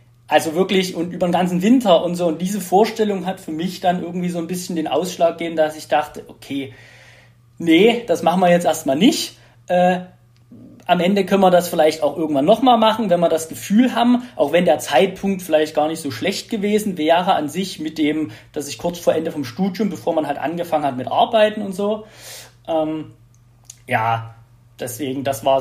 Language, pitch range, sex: German, 145-190 Hz, male